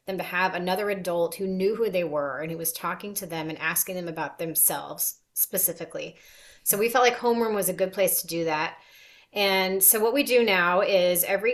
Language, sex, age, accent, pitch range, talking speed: English, female, 30-49, American, 175-225 Hz, 215 wpm